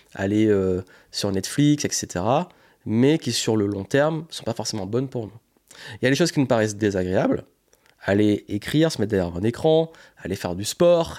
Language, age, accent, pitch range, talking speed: French, 30-49, French, 120-160 Hz, 205 wpm